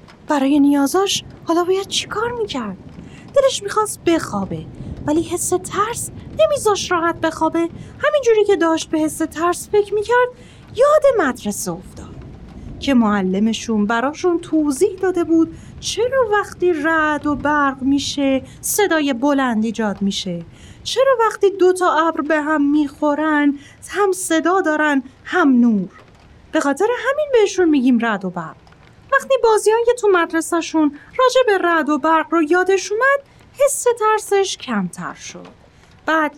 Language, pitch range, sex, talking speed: Persian, 280-420 Hz, female, 130 wpm